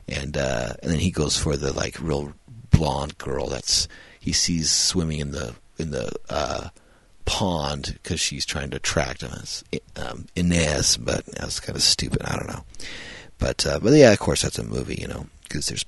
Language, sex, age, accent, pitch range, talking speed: English, male, 40-59, American, 75-90 Hz, 195 wpm